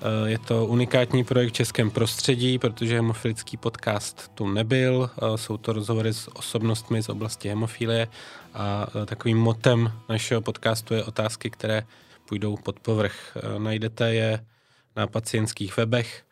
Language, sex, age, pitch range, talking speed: Czech, male, 20-39, 110-125 Hz, 130 wpm